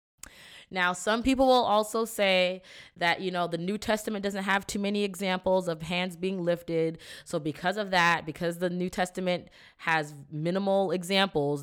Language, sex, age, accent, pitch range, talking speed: English, female, 20-39, American, 155-200 Hz, 165 wpm